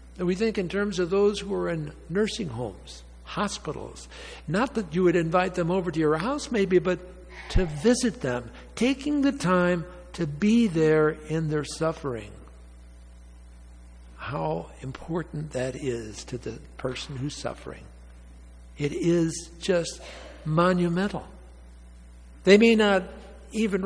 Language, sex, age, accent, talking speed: English, male, 60-79, American, 135 wpm